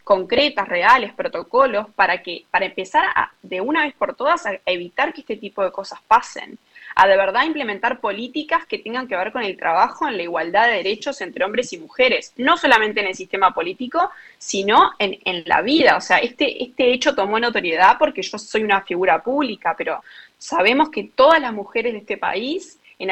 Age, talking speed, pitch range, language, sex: 20-39, 195 wpm, 185-270 Hz, Spanish, female